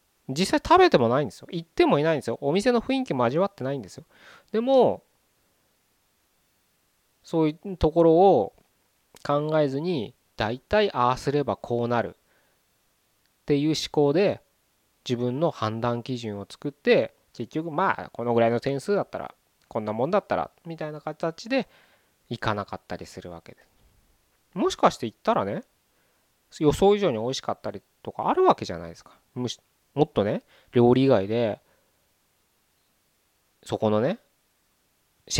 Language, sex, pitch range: Japanese, male, 115-170 Hz